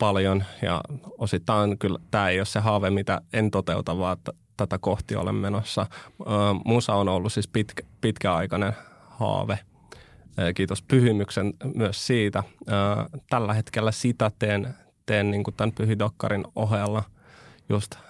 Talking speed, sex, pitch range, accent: 145 wpm, male, 100-115 Hz, native